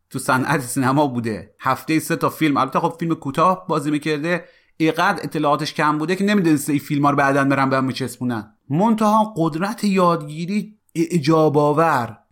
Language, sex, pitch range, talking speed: Persian, male, 135-180 Hz, 145 wpm